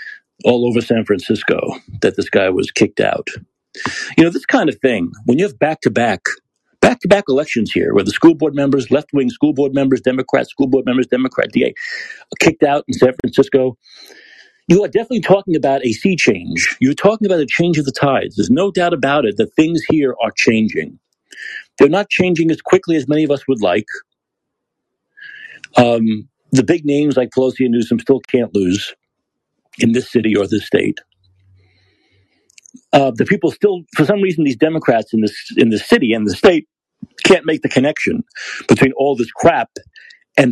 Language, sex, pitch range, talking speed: English, male, 125-190 Hz, 190 wpm